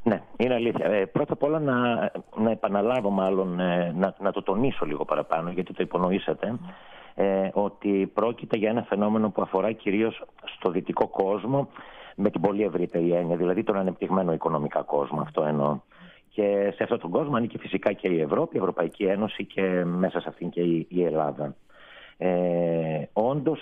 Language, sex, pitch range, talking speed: Greek, male, 85-120 Hz, 175 wpm